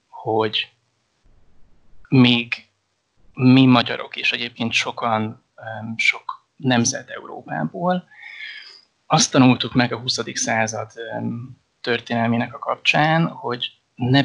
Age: 20-39